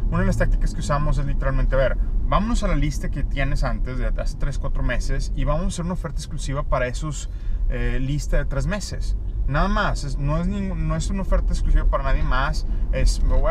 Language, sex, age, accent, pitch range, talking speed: Spanish, male, 30-49, Mexican, 85-135 Hz, 230 wpm